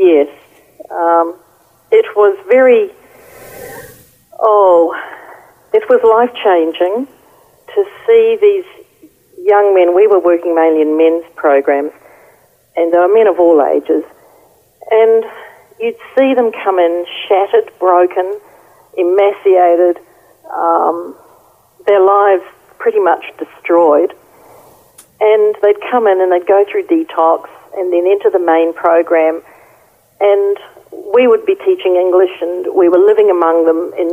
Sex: female